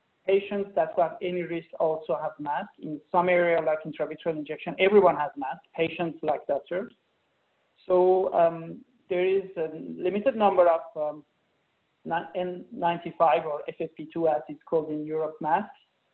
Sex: male